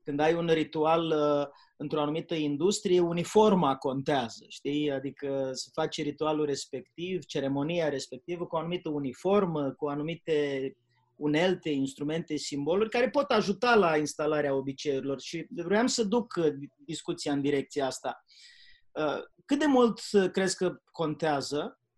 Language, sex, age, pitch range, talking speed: Romanian, male, 30-49, 140-175 Hz, 125 wpm